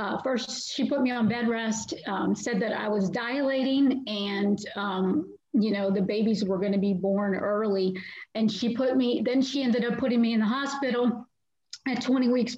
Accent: American